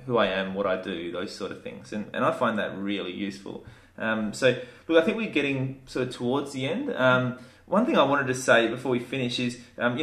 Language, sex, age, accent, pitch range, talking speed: English, male, 20-39, Australian, 115-145 Hz, 250 wpm